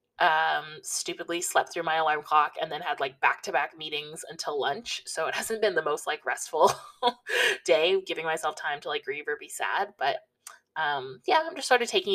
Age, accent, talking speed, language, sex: 20-39, American, 210 wpm, English, female